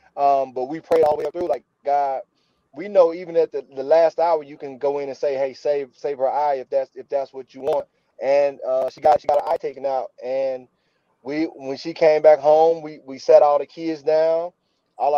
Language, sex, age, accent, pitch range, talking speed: English, male, 30-49, American, 140-175 Hz, 240 wpm